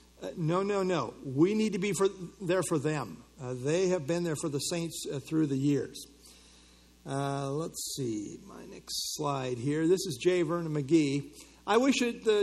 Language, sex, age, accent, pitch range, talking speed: English, male, 50-69, American, 135-180 Hz, 190 wpm